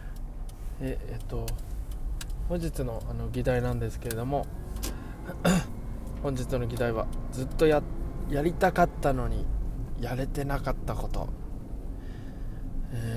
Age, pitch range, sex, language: 20-39, 105-130 Hz, male, Japanese